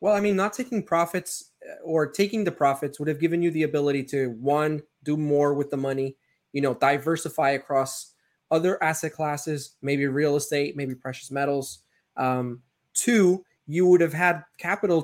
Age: 20-39